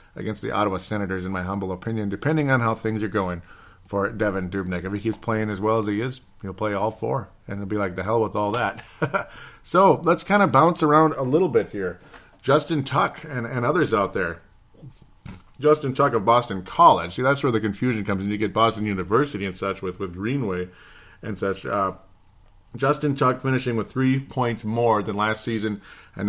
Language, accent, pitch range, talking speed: English, American, 100-125 Hz, 210 wpm